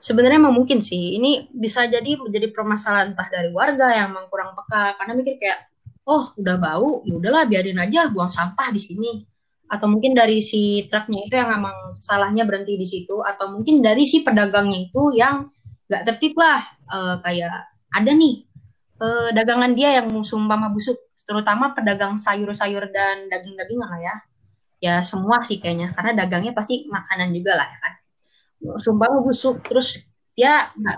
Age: 20-39